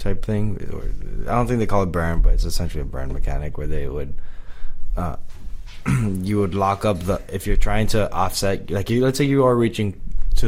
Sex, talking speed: male, 210 wpm